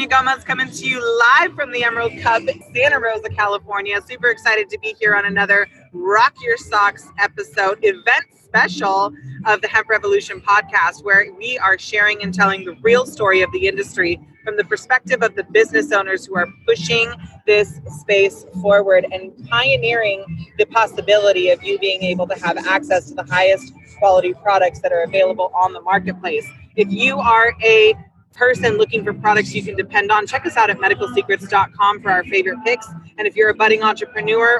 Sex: female